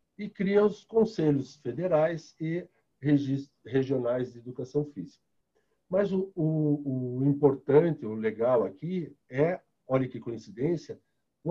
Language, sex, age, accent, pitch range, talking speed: Portuguese, male, 60-79, Brazilian, 125-165 Hz, 120 wpm